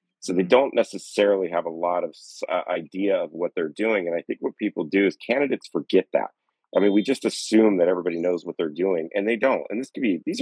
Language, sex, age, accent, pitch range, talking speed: English, male, 30-49, American, 90-100 Hz, 240 wpm